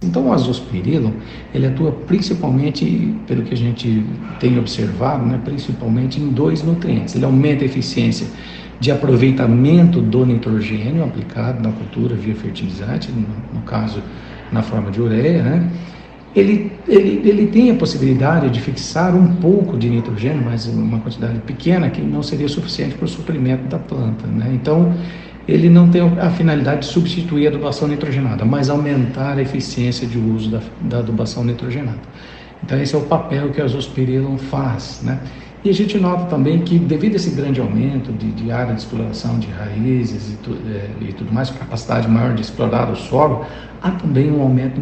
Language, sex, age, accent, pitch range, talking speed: Portuguese, male, 60-79, Brazilian, 115-150 Hz, 175 wpm